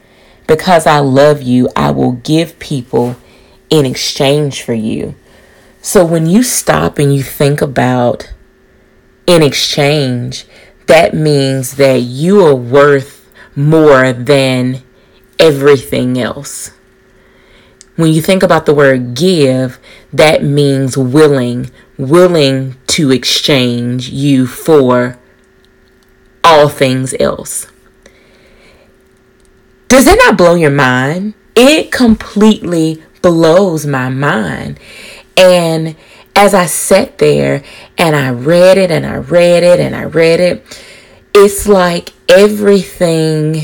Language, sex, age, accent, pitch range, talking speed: English, female, 30-49, American, 130-165 Hz, 110 wpm